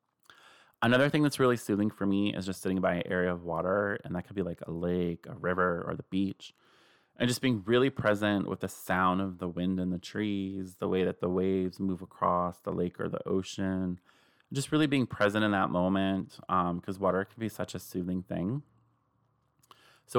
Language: English